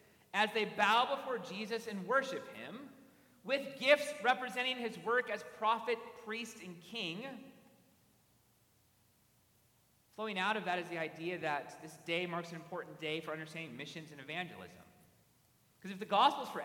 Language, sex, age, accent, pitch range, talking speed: English, male, 40-59, American, 175-235 Hz, 155 wpm